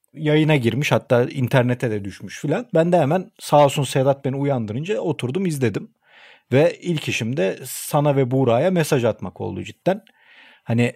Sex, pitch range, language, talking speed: male, 120-165 Hz, Turkish, 160 wpm